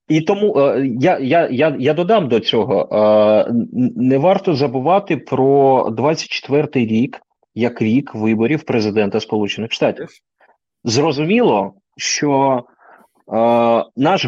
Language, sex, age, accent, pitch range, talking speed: Ukrainian, male, 30-49, native, 110-155 Hz, 100 wpm